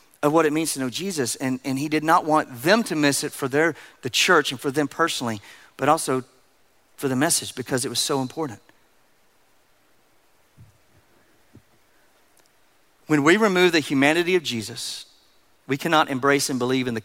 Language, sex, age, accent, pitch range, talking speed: English, male, 40-59, American, 135-160 Hz, 175 wpm